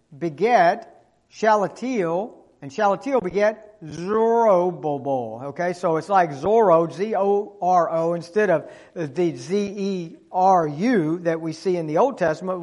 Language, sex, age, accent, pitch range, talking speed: English, male, 50-69, American, 165-230 Hz, 110 wpm